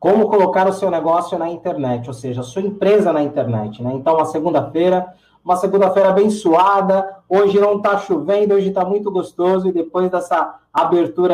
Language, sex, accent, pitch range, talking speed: Portuguese, male, Brazilian, 165-215 Hz, 175 wpm